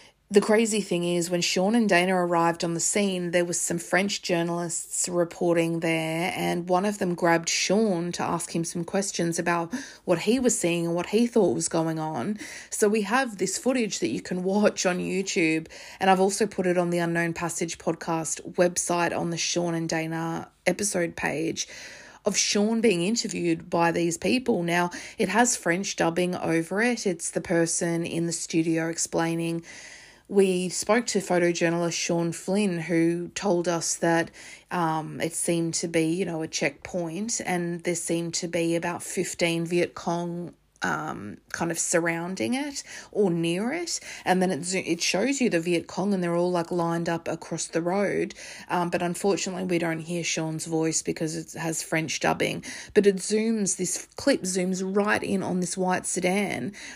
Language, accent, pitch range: English, Australian, 170-195 Hz